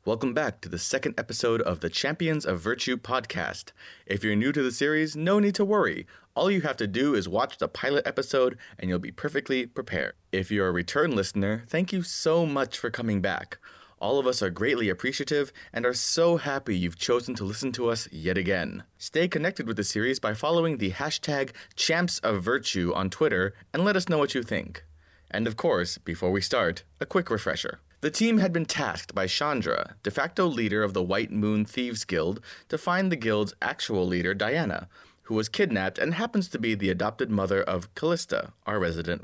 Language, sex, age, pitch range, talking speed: English, male, 30-49, 95-140 Hz, 200 wpm